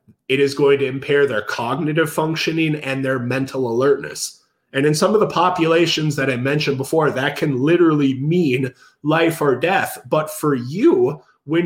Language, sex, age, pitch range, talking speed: English, male, 30-49, 140-165 Hz, 170 wpm